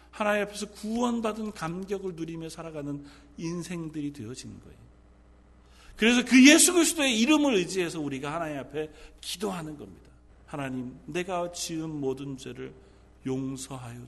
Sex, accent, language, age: male, native, Korean, 40-59